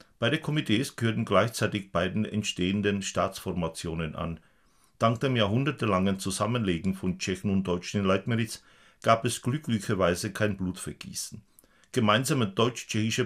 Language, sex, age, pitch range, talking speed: Czech, male, 50-69, 95-115 Hz, 115 wpm